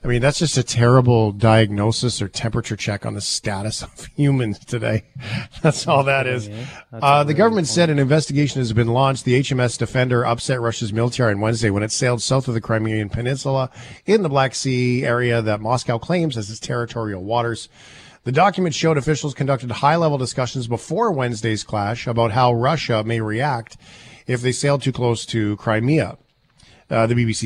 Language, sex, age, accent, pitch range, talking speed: English, male, 40-59, American, 110-140 Hz, 180 wpm